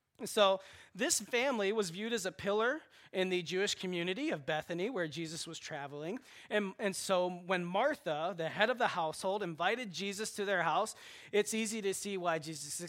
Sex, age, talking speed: male, 30-49, 180 wpm